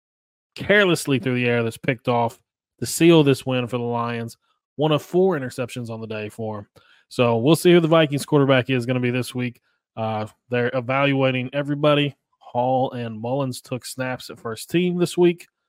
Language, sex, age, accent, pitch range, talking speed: English, male, 20-39, American, 125-150 Hz, 190 wpm